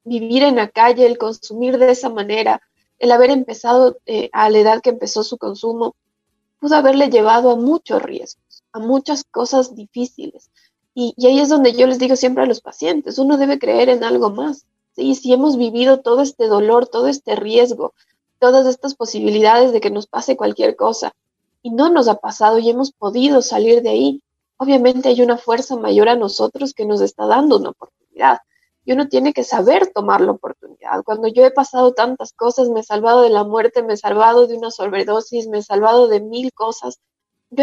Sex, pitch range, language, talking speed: female, 220-260 Hz, Spanish, 200 wpm